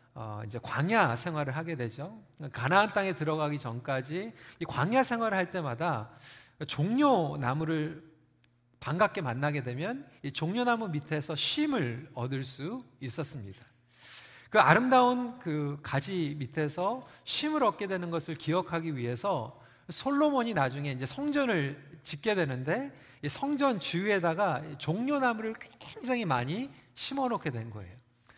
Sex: male